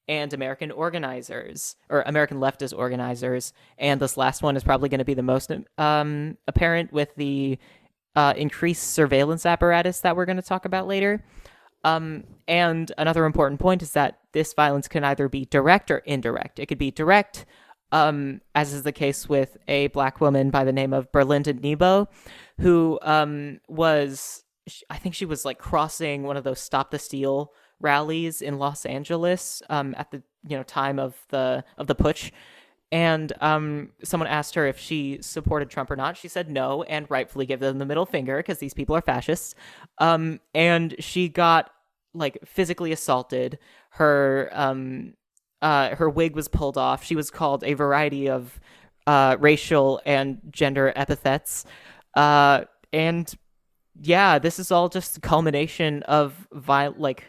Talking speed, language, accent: 170 wpm, English, American